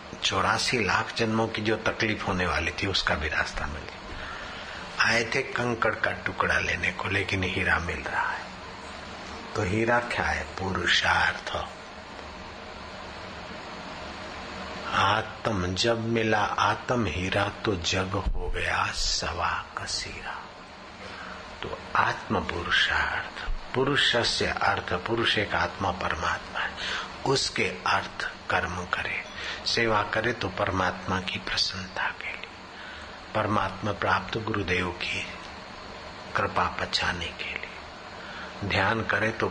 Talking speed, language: 110 wpm, Hindi